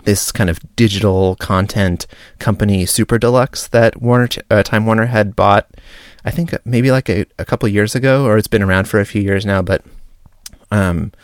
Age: 30-49